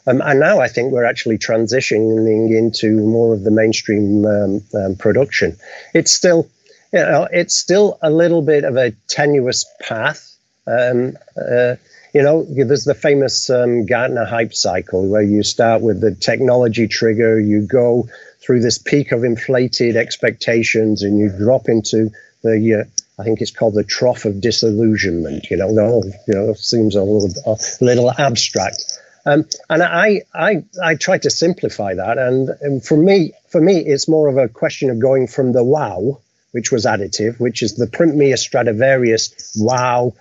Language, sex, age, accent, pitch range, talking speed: English, male, 50-69, British, 110-140 Hz, 175 wpm